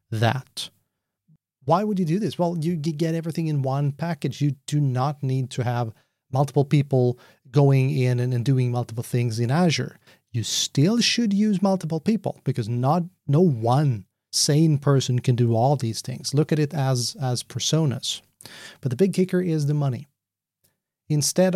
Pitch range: 125-155 Hz